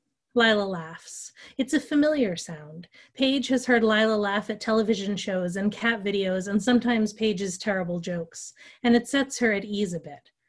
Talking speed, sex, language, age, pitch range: 170 wpm, female, English, 30-49, 200-240 Hz